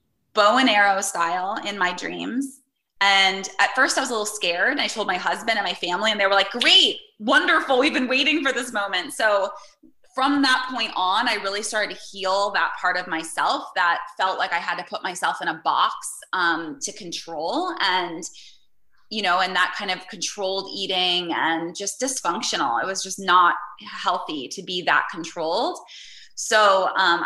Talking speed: 185 wpm